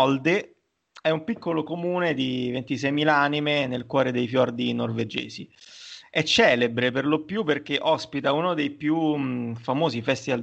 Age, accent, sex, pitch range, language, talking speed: 30-49, native, male, 125-155 Hz, Italian, 145 wpm